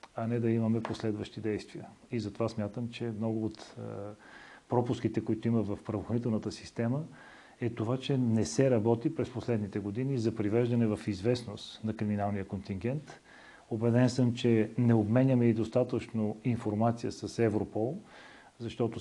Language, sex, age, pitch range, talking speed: Bulgarian, male, 40-59, 110-125 Hz, 140 wpm